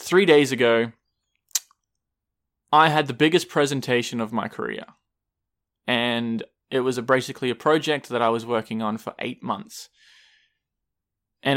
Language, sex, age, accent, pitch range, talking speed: English, male, 20-39, Australian, 115-135 Hz, 140 wpm